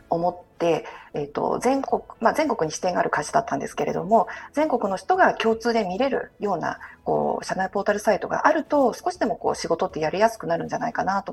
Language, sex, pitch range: Japanese, female, 195-280 Hz